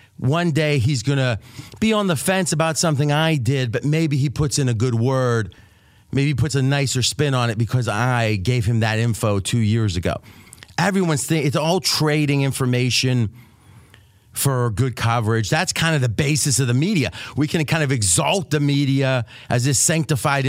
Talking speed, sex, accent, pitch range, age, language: 190 wpm, male, American, 115-145 Hz, 40-59, English